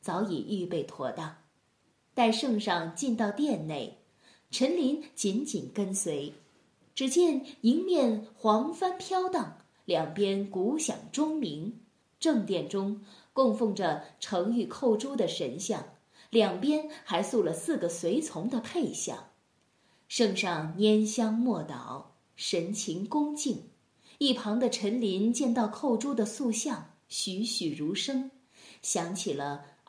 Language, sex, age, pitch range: Chinese, female, 20-39, 195-265 Hz